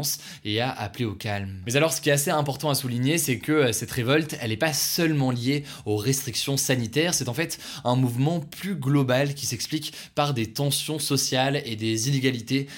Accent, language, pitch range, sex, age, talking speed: French, French, 115-145 Hz, male, 20-39, 195 wpm